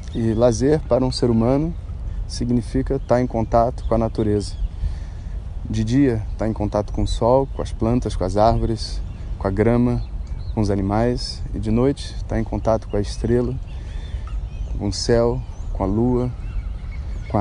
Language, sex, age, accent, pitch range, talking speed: Portuguese, male, 20-39, Brazilian, 95-120 Hz, 170 wpm